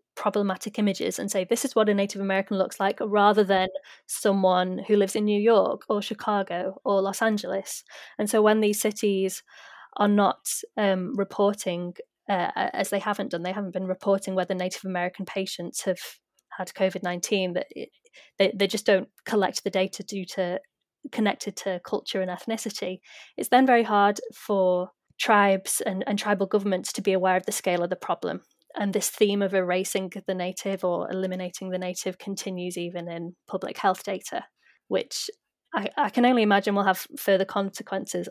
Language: English